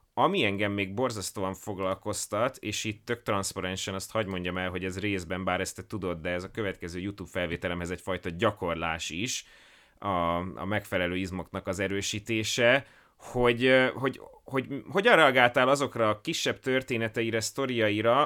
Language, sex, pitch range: Hungarian, male, 95-125 Hz